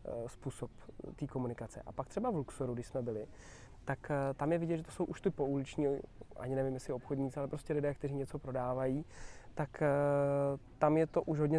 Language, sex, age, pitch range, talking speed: Czech, male, 20-39, 130-150 Hz, 190 wpm